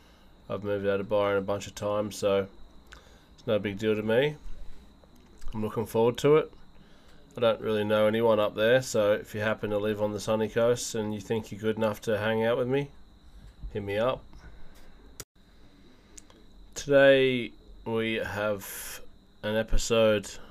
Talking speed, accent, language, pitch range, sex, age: 165 wpm, Australian, English, 100-110 Hz, male, 20-39